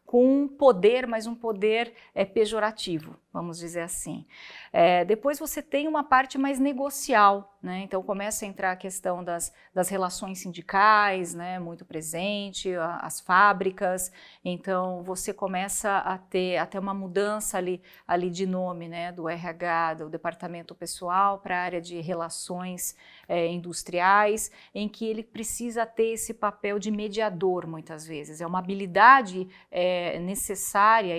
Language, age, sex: Portuguese, 40-59, female